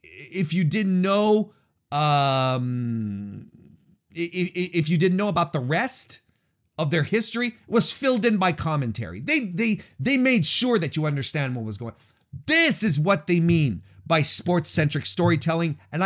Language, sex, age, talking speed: English, male, 30-49, 160 wpm